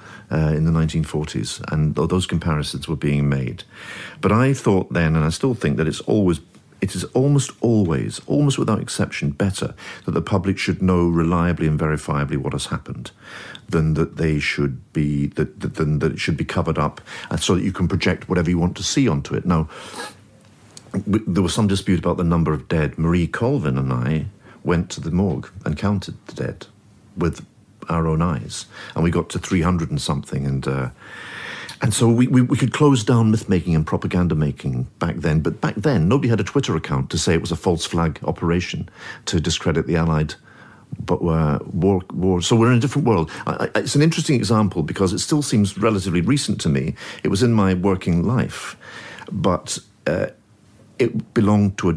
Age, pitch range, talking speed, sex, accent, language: 50-69, 80-105 Hz, 200 wpm, male, British, English